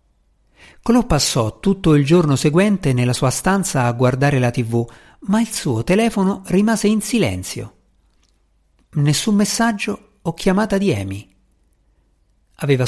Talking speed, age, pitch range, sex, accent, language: 125 wpm, 40-59, 110-165 Hz, male, native, Italian